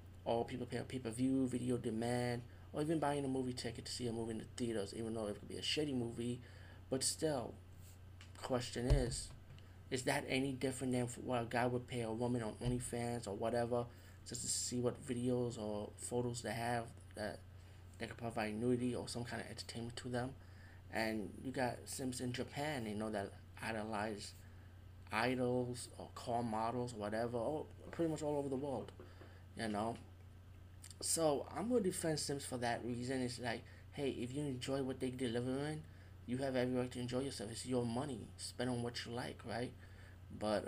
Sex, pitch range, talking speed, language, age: male, 95-125 Hz, 195 wpm, English, 20-39